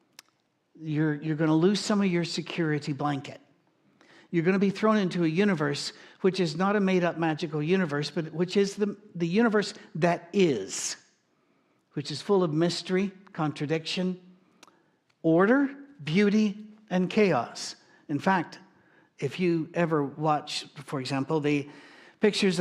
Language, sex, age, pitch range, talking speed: English, male, 60-79, 150-185 Hz, 140 wpm